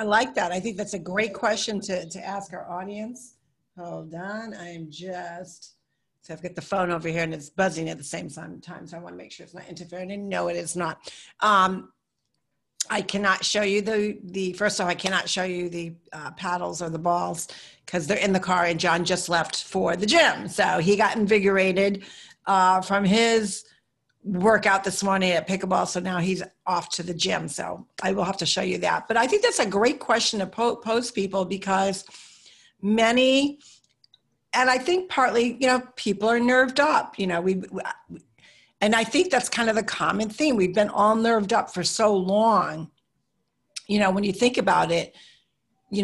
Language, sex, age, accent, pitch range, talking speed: English, female, 50-69, American, 180-215 Hz, 200 wpm